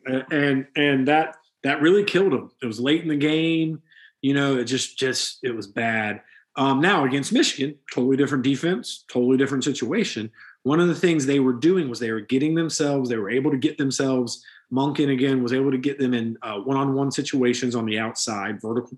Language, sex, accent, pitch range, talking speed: English, male, American, 115-140 Hz, 200 wpm